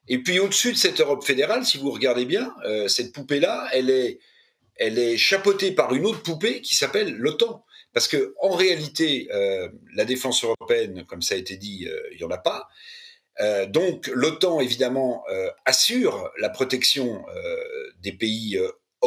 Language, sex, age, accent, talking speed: French, male, 50-69, French, 175 wpm